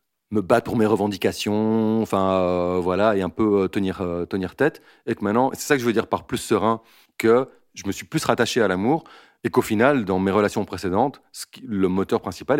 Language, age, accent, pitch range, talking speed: French, 30-49, French, 95-115 Hz, 225 wpm